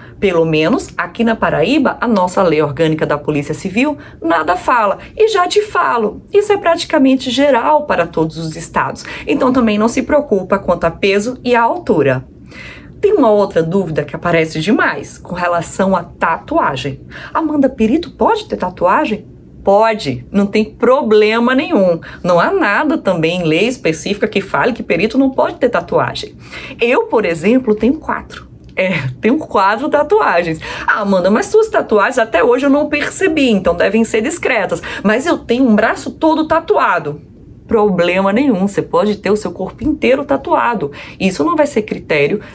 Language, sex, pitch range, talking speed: Portuguese, female, 185-280 Hz, 170 wpm